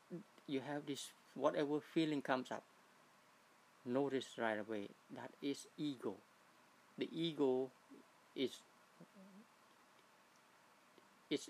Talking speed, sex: 90 wpm, male